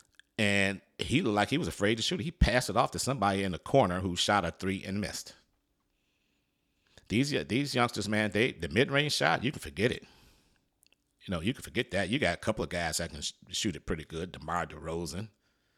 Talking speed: 215 wpm